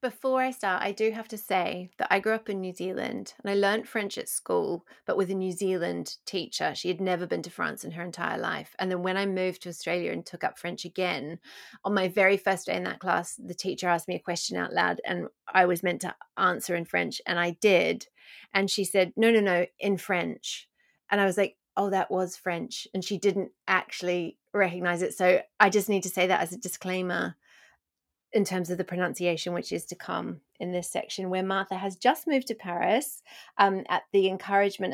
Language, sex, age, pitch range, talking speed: English, female, 30-49, 180-200 Hz, 225 wpm